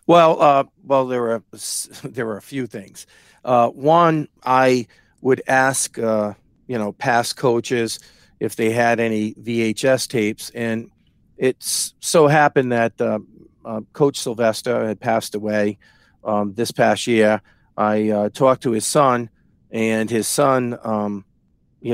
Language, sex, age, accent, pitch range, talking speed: English, male, 50-69, American, 110-130 Hz, 145 wpm